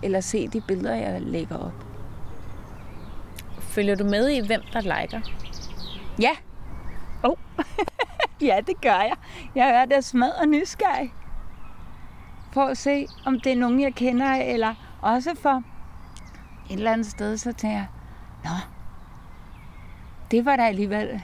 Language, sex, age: Danish, female, 30-49